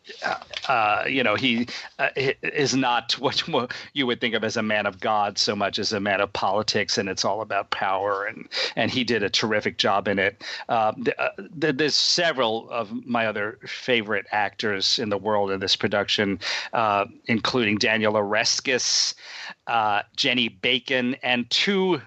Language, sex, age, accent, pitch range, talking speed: English, male, 40-59, American, 110-130 Hz, 175 wpm